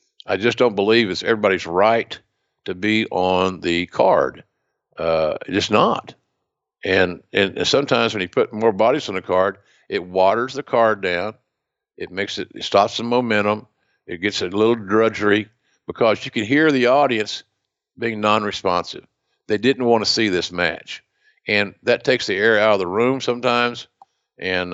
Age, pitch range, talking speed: 50-69, 100-120 Hz, 170 wpm